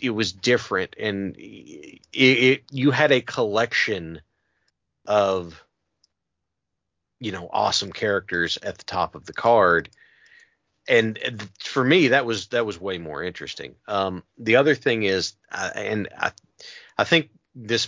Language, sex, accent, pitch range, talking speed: English, male, American, 95-130 Hz, 140 wpm